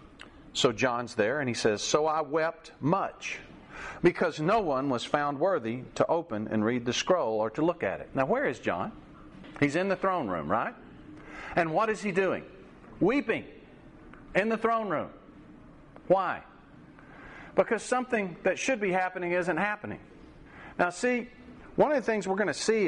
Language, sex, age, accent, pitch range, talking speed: English, male, 50-69, American, 125-190 Hz, 175 wpm